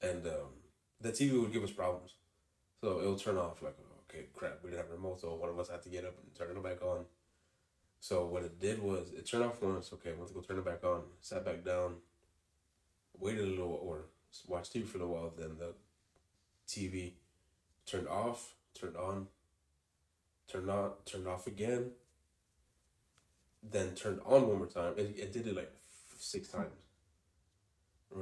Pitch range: 85-95 Hz